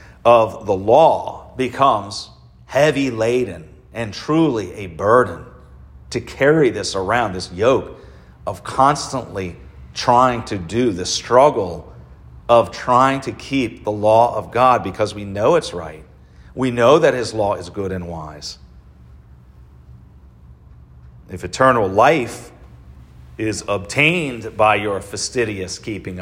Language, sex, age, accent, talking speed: English, male, 40-59, American, 125 wpm